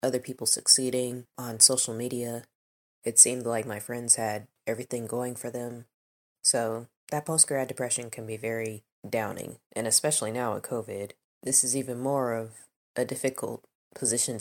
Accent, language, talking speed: American, English, 155 wpm